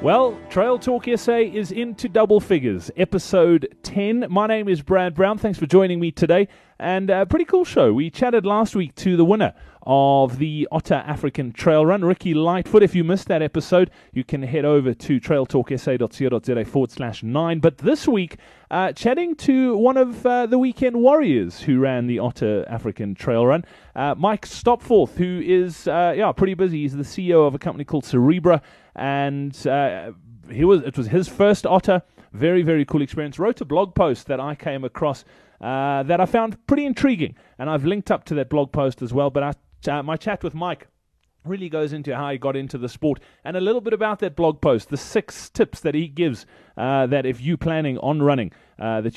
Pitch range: 135-195 Hz